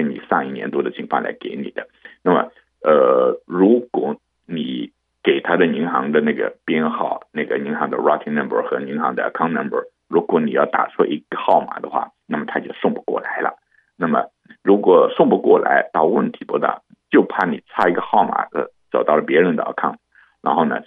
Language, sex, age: Chinese, male, 50-69